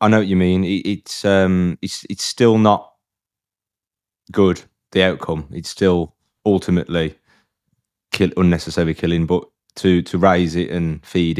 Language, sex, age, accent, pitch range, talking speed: English, male, 20-39, British, 80-90 Hz, 145 wpm